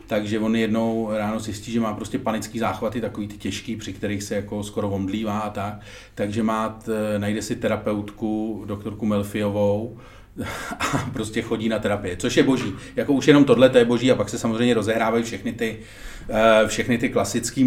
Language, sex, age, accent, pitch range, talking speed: Czech, male, 40-59, native, 110-130 Hz, 185 wpm